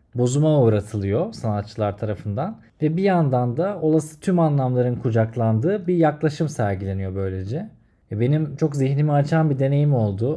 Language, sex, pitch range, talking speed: Turkish, male, 115-150 Hz, 135 wpm